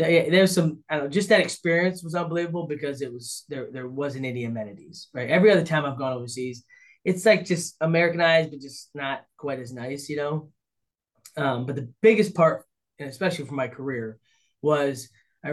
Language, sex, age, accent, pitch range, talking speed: English, male, 20-39, American, 130-170 Hz, 195 wpm